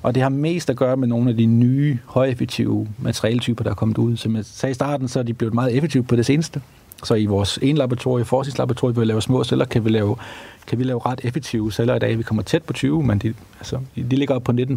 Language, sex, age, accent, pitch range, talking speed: Danish, male, 40-59, native, 105-125 Hz, 270 wpm